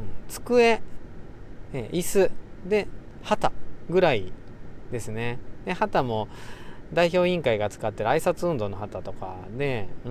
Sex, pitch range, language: male, 120-195 Hz, Japanese